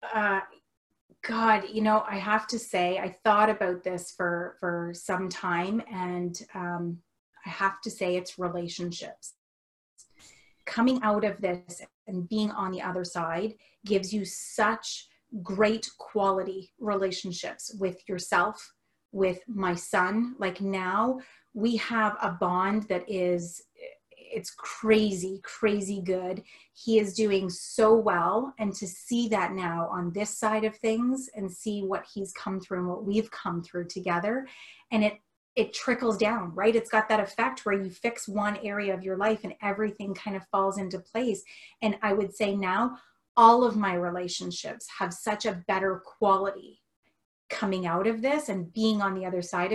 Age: 30-49